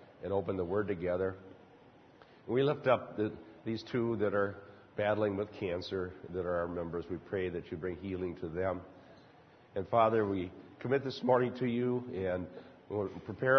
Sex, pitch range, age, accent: male, 95-120 Hz, 50-69, American